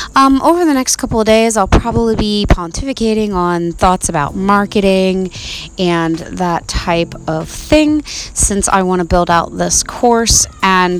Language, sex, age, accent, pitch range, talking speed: English, female, 20-39, American, 165-205 Hz, 160 wpm